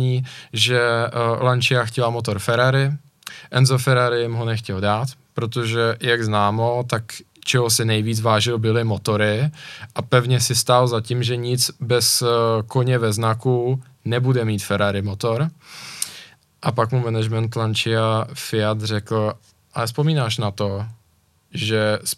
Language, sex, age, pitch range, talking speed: Czech, male, 20-39, 110-140 Hz, 135 wpm